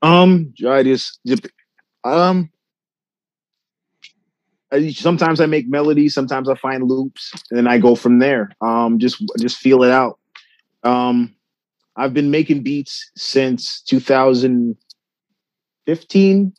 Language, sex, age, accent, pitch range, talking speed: English, male, 30-49, American, 110-140 Hz, 110 wpm